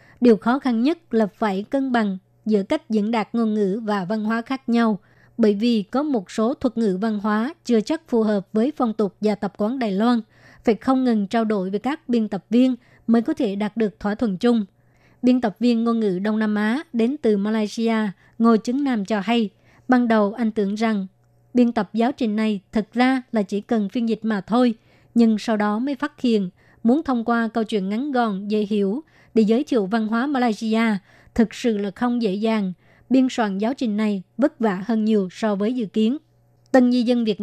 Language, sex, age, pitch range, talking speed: Vietnamese, male, 20-39, 210-240 Hz, 220 wpm